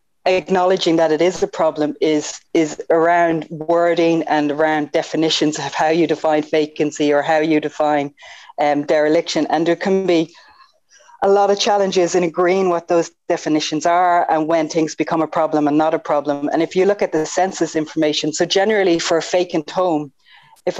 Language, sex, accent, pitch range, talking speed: English, female, Irish, 150-175 Hz, 180 wpm